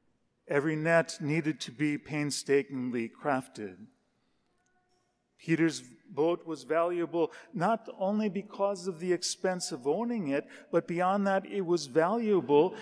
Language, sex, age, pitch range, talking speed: English, male, 50-69, 150-180 Hz, 120 wpm